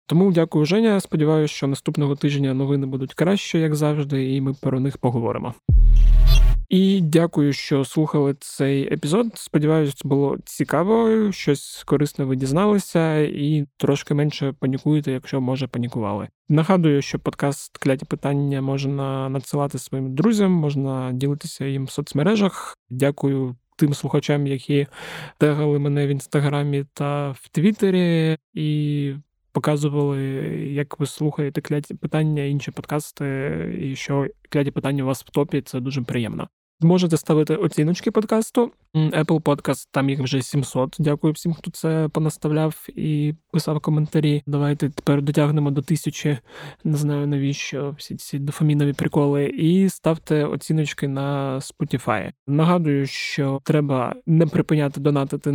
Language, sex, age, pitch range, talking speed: Ukrainian, male, 20-39, 140-155 Hz, 130 wpm